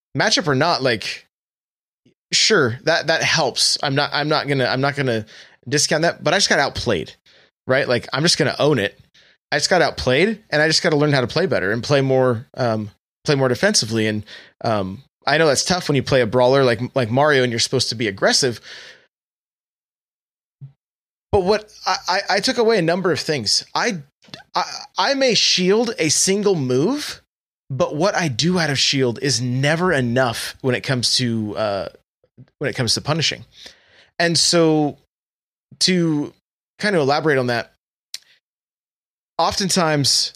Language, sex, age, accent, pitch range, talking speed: English, male, 20-39, American, 125-165 Hz, 175 wpm